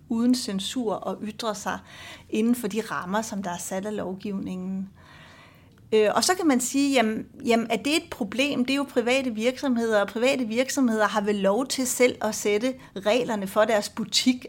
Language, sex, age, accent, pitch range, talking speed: Danish, female, 40-59, native, 210-260 Hz, 185 wpm